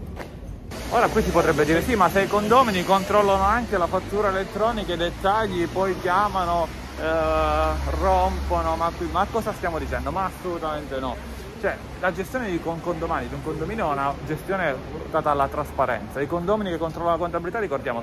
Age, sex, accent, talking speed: 30-49, male, native, 170 wpm